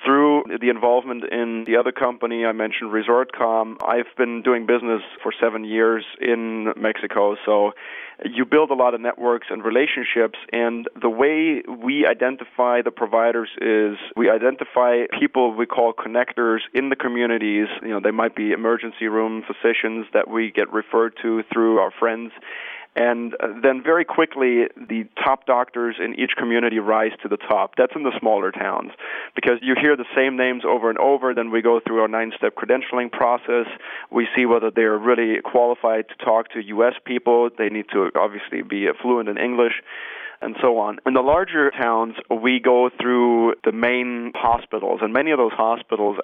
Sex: male